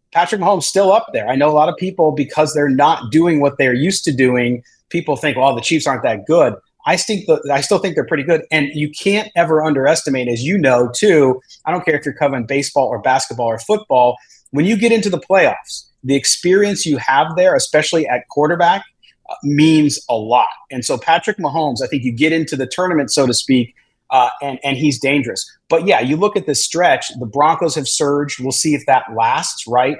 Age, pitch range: 30-49, 125-165 Hz